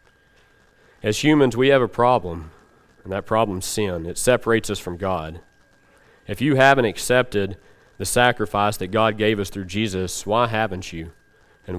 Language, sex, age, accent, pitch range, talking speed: English, male, 40-59, American, 95-120 Hz, 160 wpm